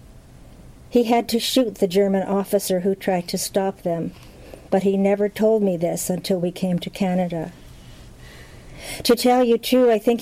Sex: female